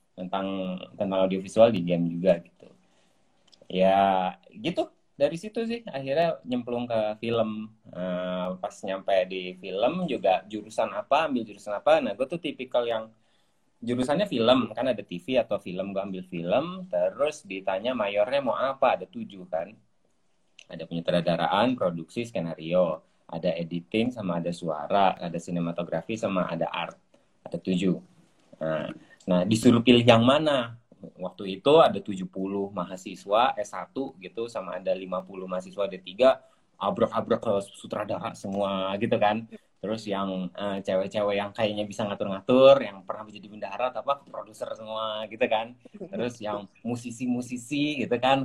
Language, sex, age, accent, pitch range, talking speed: Indonesian, male, 20-39, native, 95-125 Hz, 140 wpm